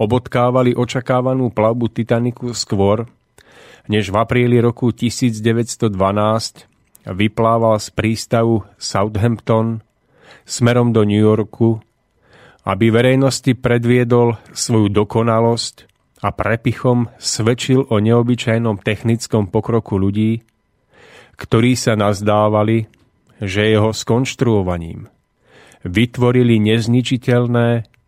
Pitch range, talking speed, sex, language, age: 105-125 Hz, 85 wpm, male, Slovak, 30-49